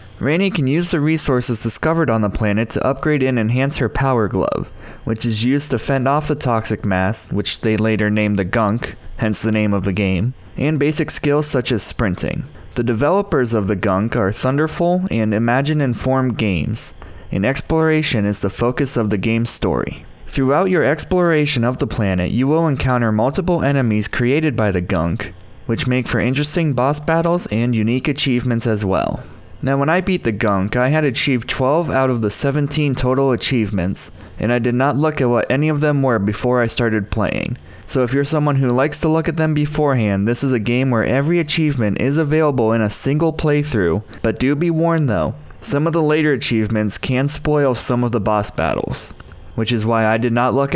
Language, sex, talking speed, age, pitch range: English, male, 195 wpm, 20-39, 110-145 Hz